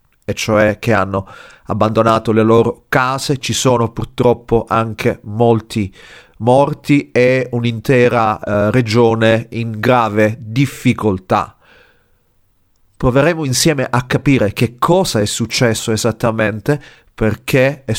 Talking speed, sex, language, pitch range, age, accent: 105 wpm, male, Italian, 105-130 Hz, 40-59, native